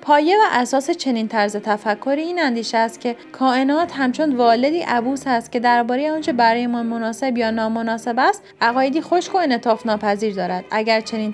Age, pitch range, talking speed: 30-49, 225-275 Hz, 170 wpm